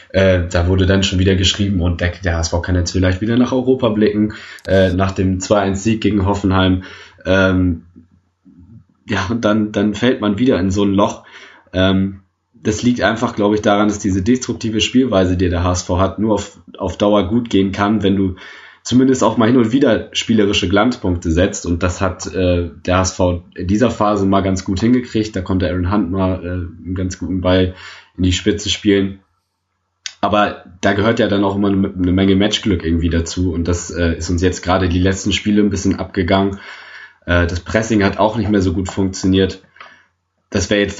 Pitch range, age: 90-105 Hz, 20-39